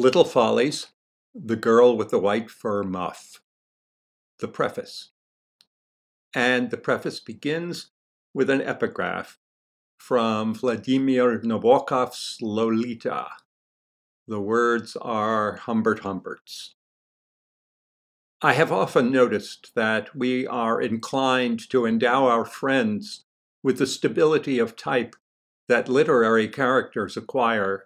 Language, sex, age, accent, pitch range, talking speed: English, male, 50-69, American, 105-135 Hz, 105 wpm